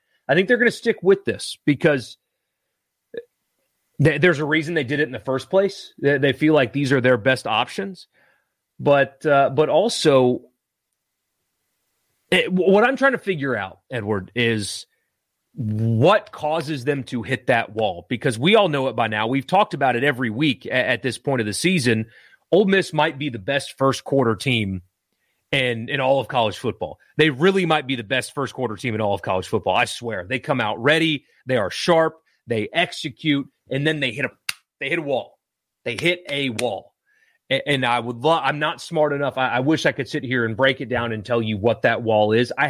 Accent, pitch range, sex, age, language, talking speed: American, 120-155 Hz, male, 30-49, English, 205 wpm